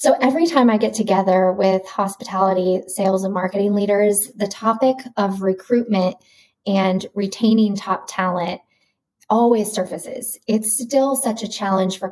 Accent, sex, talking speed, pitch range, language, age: American, female, 140 wpm, 185-220 Hz, English, 20-39